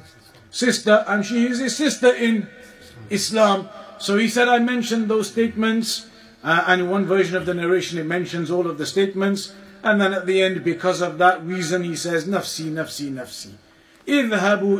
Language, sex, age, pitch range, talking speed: English, male, 50-69, 185-220 Hz, 180 wpm